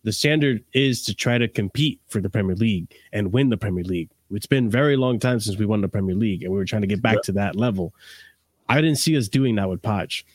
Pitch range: 105-140 Hz